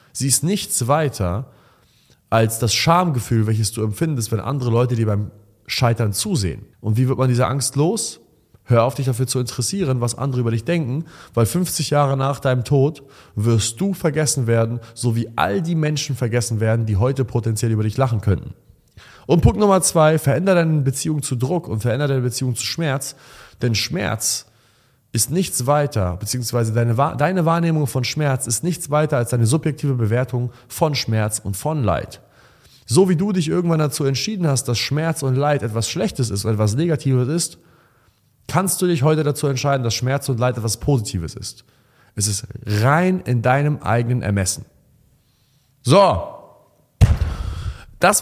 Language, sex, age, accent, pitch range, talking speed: German, male, 30-49, German, 115-145 Hz, 170 wpm